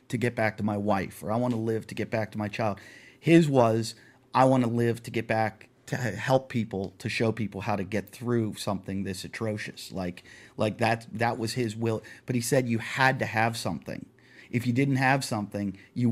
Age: 30-49